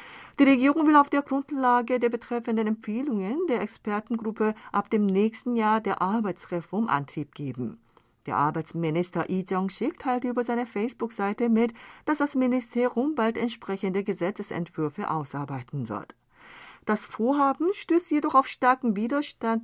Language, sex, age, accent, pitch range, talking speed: German, female, 40-59, German, 165-240 Hz, 130 wpm